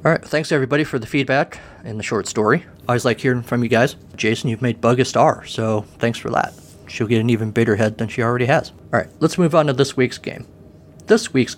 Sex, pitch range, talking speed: male, 105-130 Hz, 245 wpm